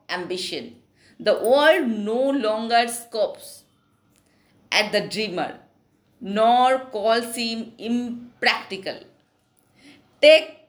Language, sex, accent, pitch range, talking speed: Hindi, female, native, 210-300 Hz, 80 wpm